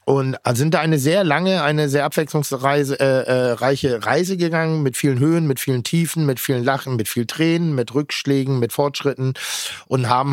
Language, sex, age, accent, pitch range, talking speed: German, male, 50-69, German, 125-155 Hz, 175 wpm